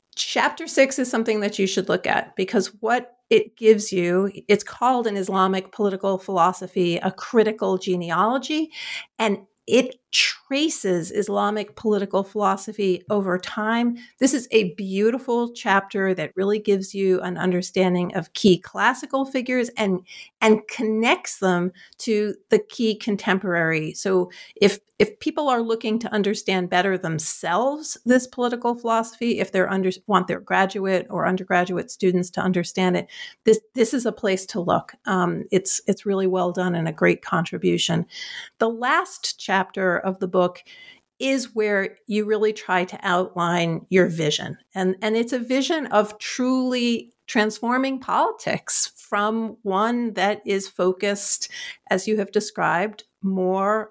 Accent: American